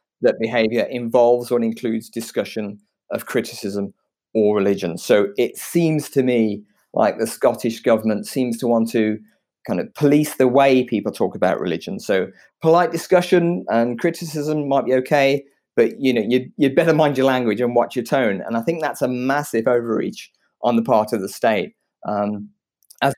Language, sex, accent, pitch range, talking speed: English, male, British, 115-145 Hz, 175 wpm